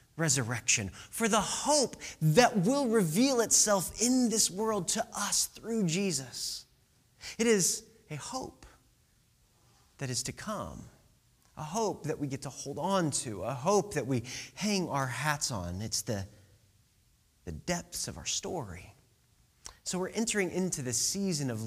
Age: 30-49